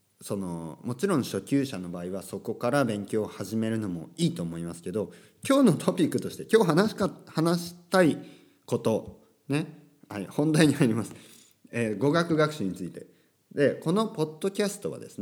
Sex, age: male, 40-59